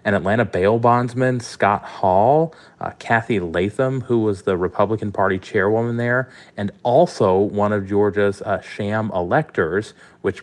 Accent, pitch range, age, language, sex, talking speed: American, 95-115 Hz, 30-49, English, male, 145 wpm